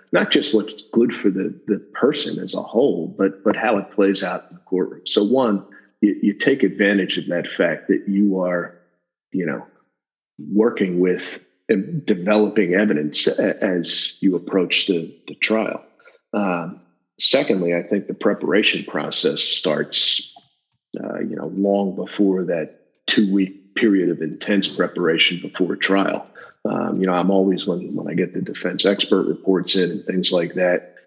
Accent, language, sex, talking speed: American, English, male, 165 wpm